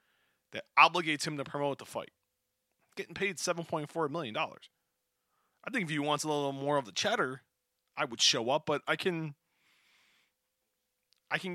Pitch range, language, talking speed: 110-155 Hz, English, 160 wpm